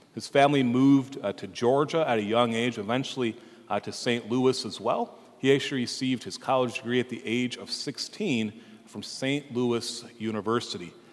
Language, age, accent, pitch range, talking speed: English, 40-59, American, 110-130 Hz, 175 wpm